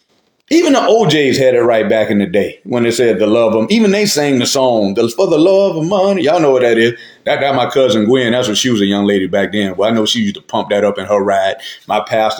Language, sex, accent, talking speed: English, male, American, 285 wpm